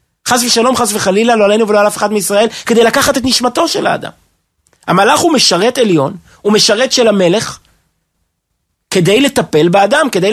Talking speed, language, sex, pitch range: 170 wpm, Hebrew, male, 175-230 Hz